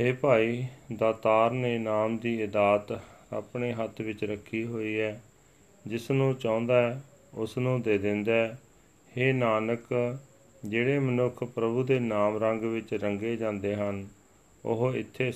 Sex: male